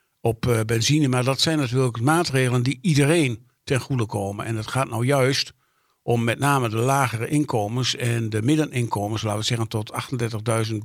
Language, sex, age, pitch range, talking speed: Dutch, male, 50-69, 115-135 Hz, 170 wpm